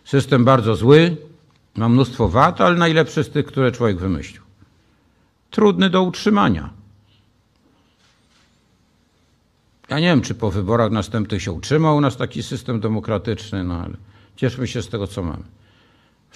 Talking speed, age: 140 wpm, 50-69